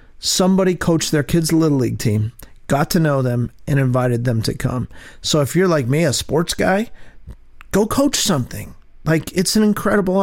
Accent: American